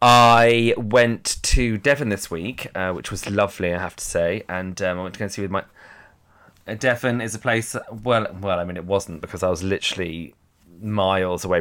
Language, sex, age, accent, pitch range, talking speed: English, male, 20-39, British, 95-130 Hz, 205 wpm